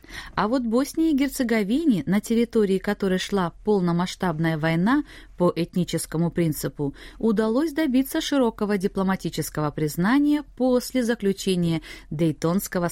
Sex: female